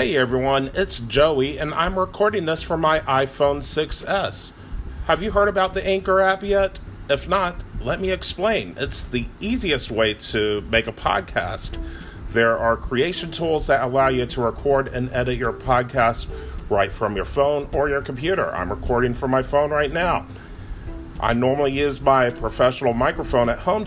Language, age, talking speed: English, 40-59, 170 wpm